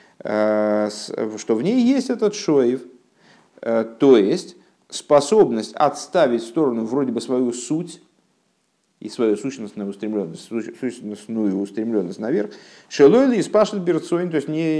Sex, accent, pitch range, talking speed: male, native, 115-180 Hz, 125 wpm